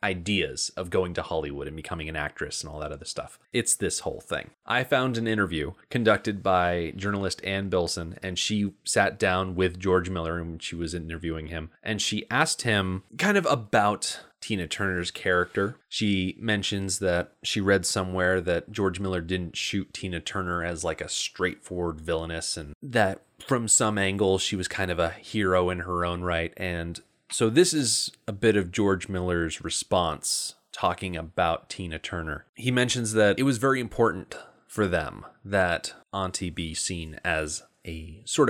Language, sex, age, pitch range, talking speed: English, male, 30-49, 85-110 Hz, 175 wpm